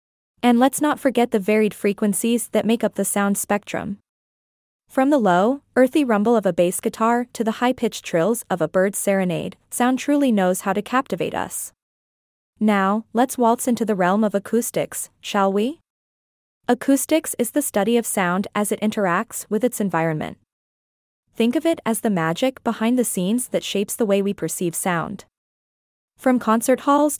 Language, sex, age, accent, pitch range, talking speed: English, female, 20-39, American, 200-250 Hz, 170 wpm